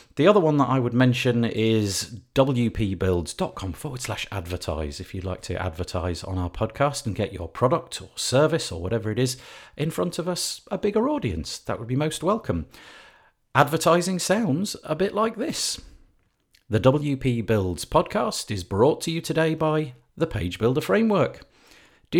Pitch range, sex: 90-145 Hz, male